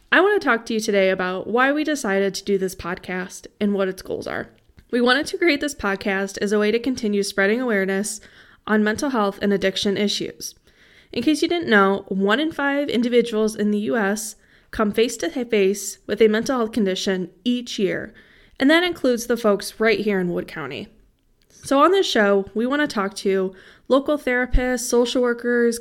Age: 10-29